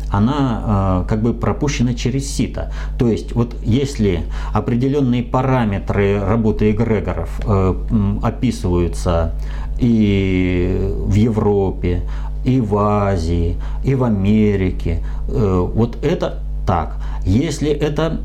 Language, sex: Russian, male